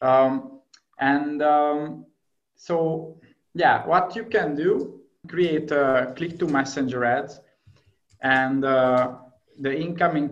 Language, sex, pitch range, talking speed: English, male, 130-155 Hz, 110 wpm